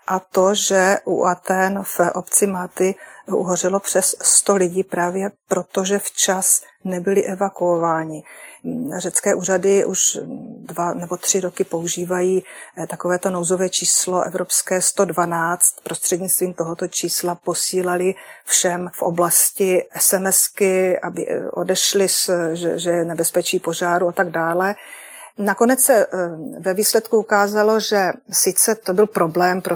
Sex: female